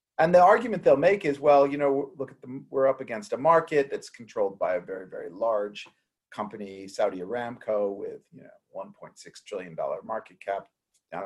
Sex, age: male, 40-59